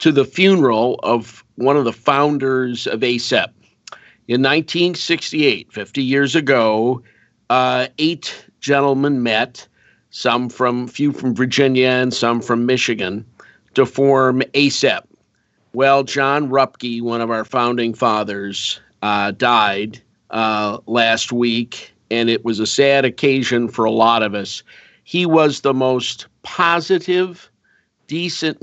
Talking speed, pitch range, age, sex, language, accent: 130 wpm, 115-140 Hz, 50-69, male, English, American